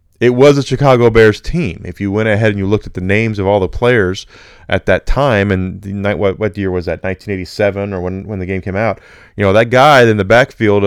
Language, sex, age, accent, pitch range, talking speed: English, male, 30-49, American, 90-110 Hz, 265 wpm